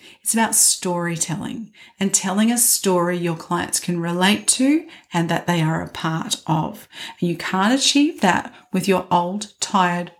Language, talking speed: English, 160 wpm